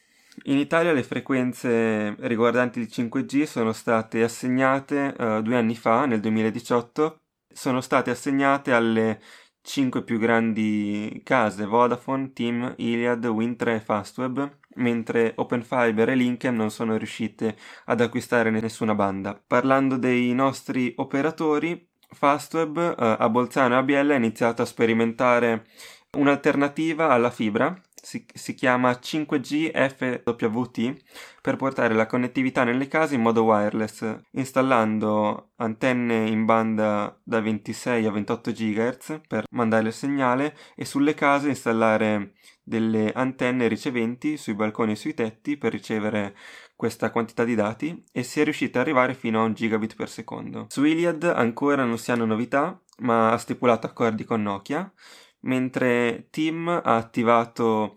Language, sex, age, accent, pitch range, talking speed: Italian, male, 20-39, native, 110-135 Hz, 130 wpm